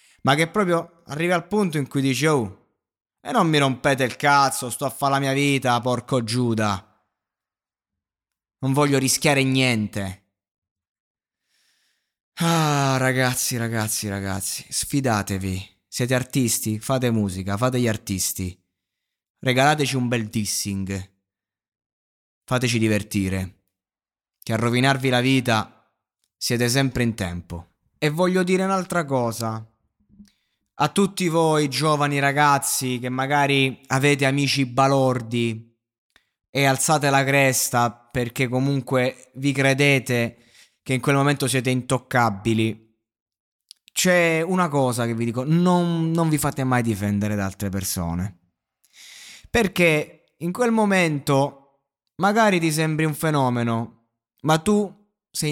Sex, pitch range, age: male, 105-140 Hz, 20-39